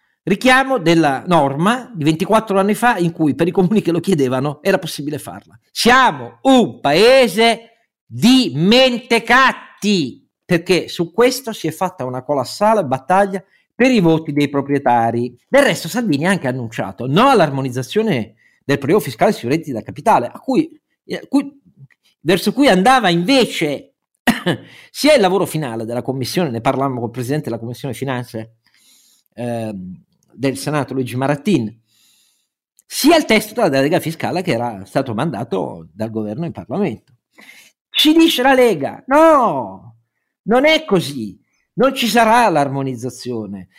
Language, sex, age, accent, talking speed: Italian, male, 50-69, native, 145 wpm